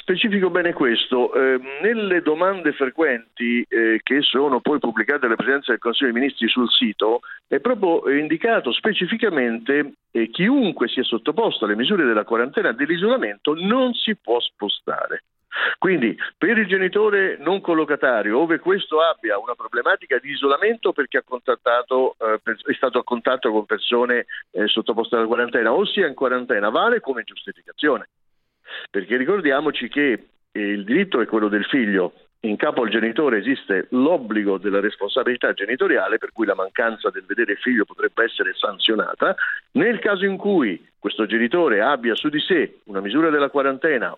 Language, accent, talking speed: Italian, native, 160 wpm